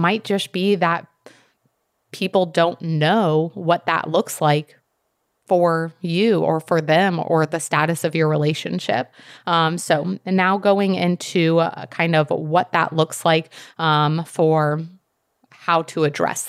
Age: 30-49